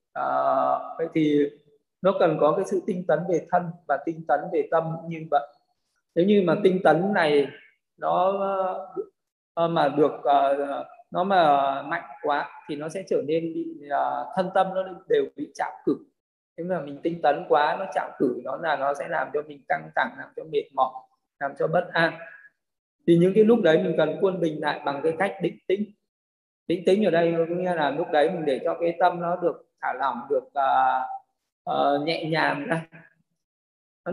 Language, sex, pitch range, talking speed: Vietnamese, male, 160-195 Hz, 195 wpm